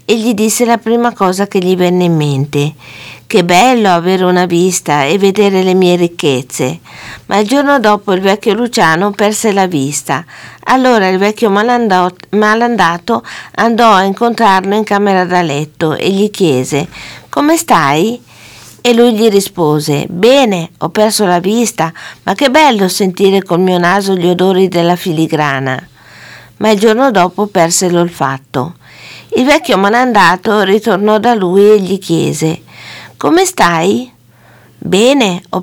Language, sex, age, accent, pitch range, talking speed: Italian, female, 50-69, native, 175-225 Hz, 145 wpm